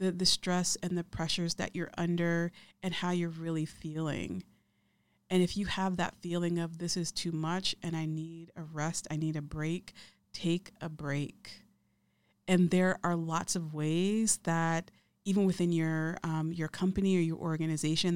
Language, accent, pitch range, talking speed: English, American, 160-180 Hz, 170 wpm